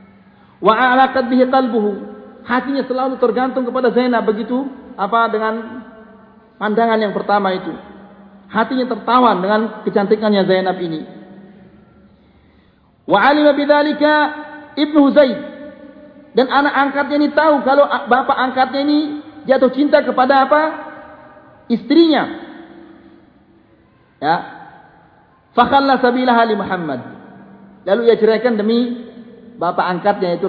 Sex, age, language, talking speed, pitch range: male, 40-59, Malay, 105 wpm, 195-285 Hz